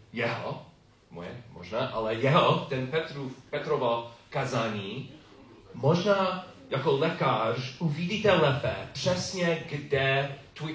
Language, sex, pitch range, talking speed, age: Czech, male, 120-150 Hz, 95 wpm, 40-59